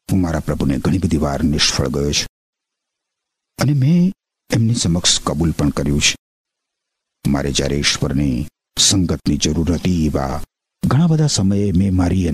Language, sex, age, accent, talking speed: Gujarati, male, 50-69, native, 60 wpm